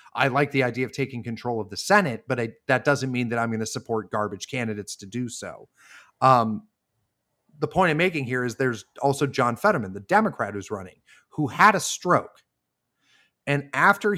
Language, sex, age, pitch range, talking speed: English, male, 30-49, 120-160 Hz, 190 wpm